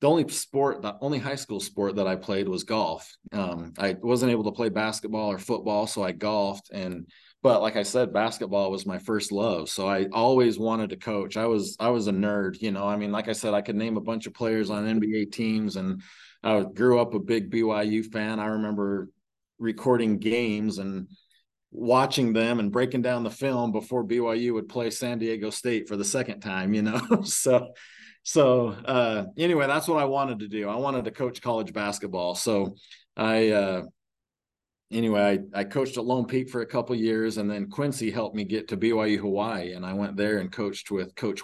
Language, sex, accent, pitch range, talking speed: English, male, American, 100-120 Hz, 210 wpm